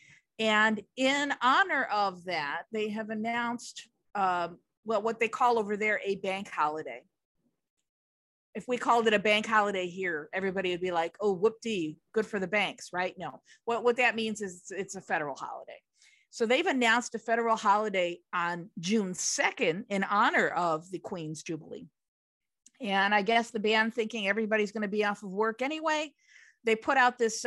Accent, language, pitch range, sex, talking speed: American, English, 180-230 Hz, female, 170 wpm